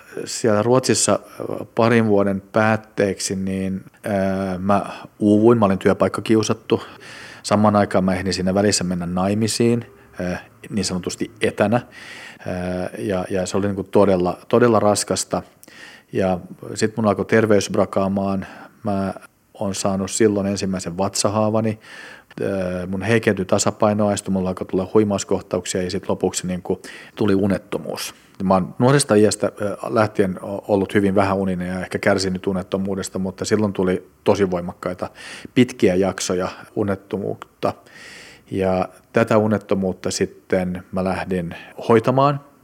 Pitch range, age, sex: 95-105 Hz, 40-59, male